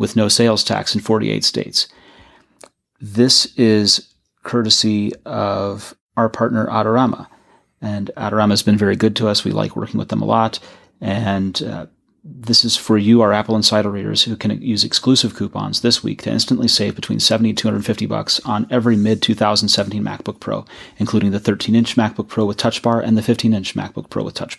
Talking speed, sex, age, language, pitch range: 180 wpm, male, 30-49, English, 105-115 Hz